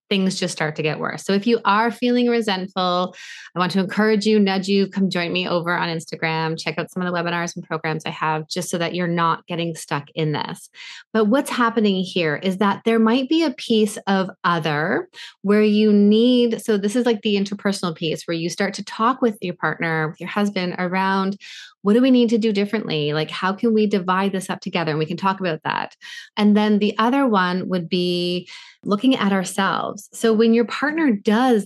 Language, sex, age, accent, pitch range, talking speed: English, female, 20-39, American, 165-215 Hz, 220 wpm